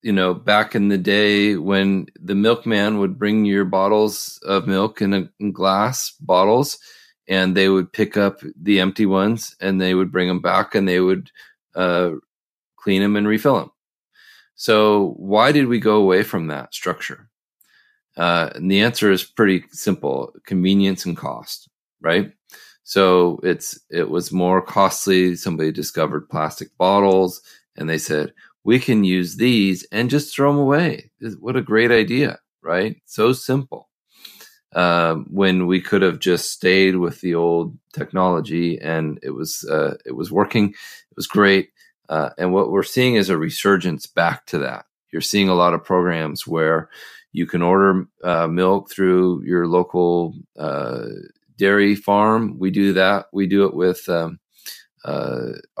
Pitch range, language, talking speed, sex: 90-105 Hz, English, 160 wpm, male